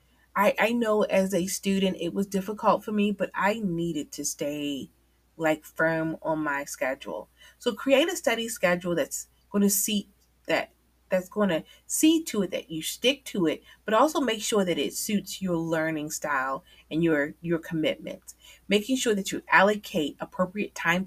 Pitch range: 160-210 Hz